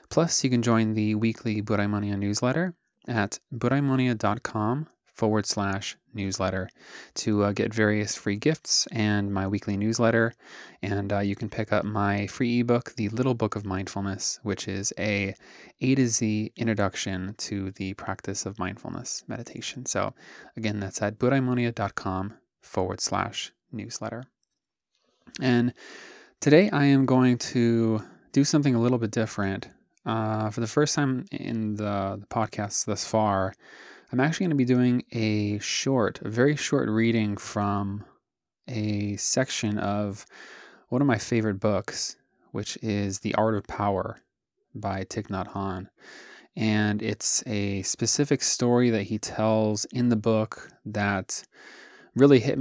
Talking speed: 145 wpm